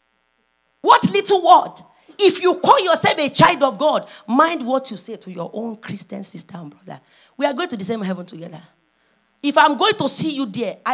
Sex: female